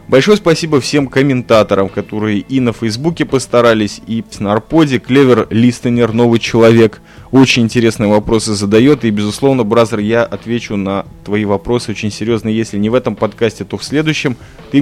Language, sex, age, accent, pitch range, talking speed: Russian, male, 20-39, native, 110-135 Hz, 160 wpm